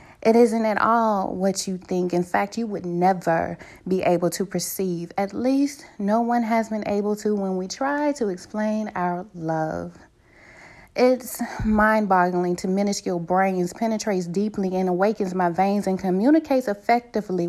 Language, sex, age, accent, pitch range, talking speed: English, female, 30-49, American, 175-210 Hz, 155 wpm